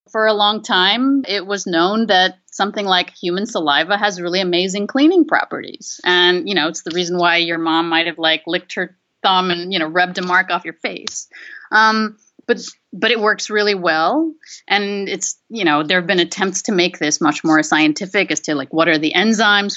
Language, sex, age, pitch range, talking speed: English, female, 30-49, 180-260 Hz, 210 wpm